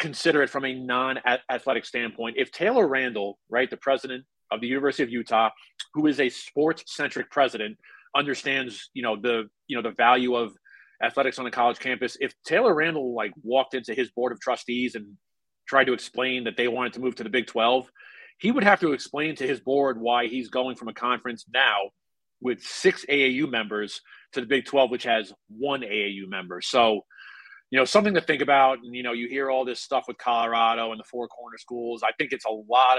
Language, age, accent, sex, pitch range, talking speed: English, 30-49, American, male, 110-130 Hz, 205 wpm